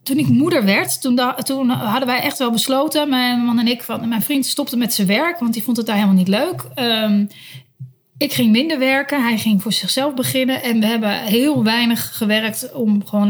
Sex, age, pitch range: female, 30-49, 190-235 Hz